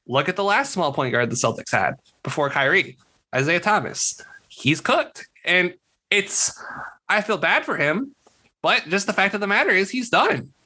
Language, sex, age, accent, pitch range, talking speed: English, male, 20-39, American, 140-215 Hz, 185 wpm